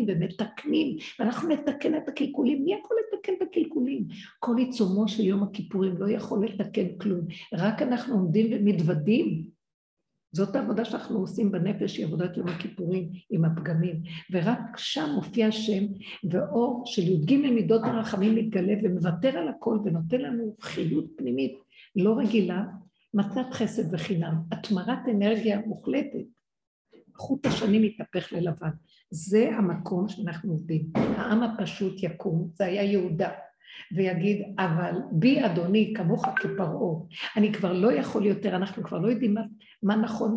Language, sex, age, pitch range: Hebrew, female, 50-69, 185-235 Hz